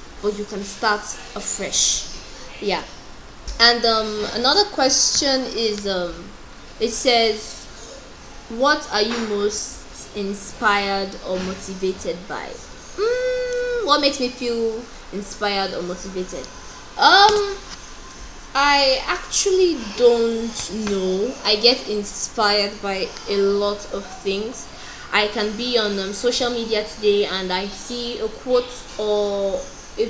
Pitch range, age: 200-235 Hz, 10-29